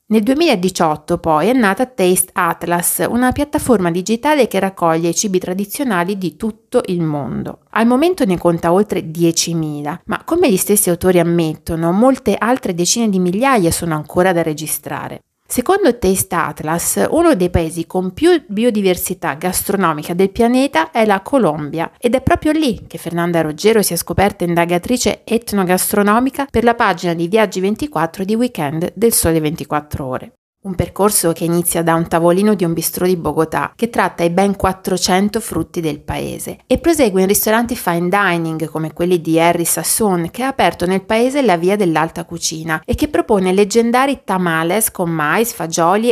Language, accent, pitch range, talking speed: Italian, native, 170-225 Hz, 165 wpm